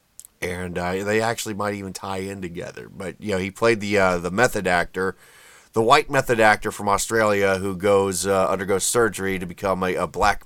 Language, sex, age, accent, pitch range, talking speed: English, male, 30-49, American, 95-120 Hz, 200 wpm